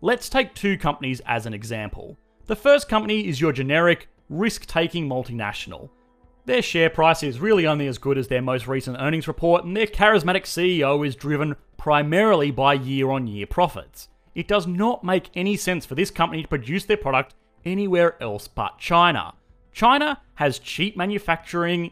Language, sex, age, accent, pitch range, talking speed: English, male, 30-49, Australian, 140-190 Hz, 165 wpm